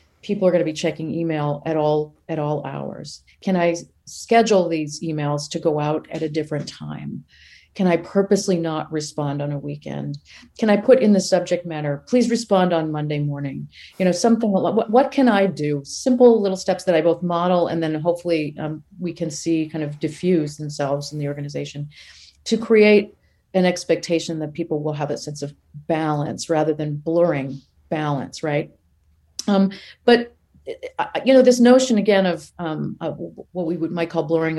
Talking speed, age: 180 wpm, 40-59